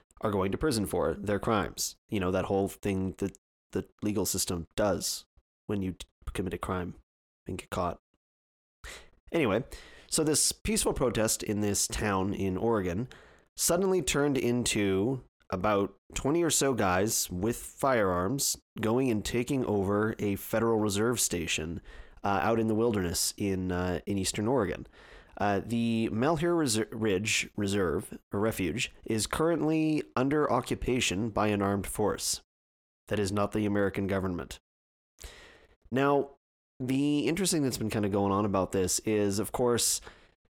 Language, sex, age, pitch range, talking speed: English, male, 30-49, 95-120 Hz, 145 wpm